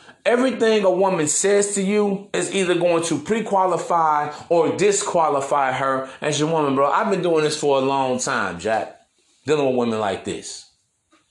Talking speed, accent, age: 170 wpm, American, 30-49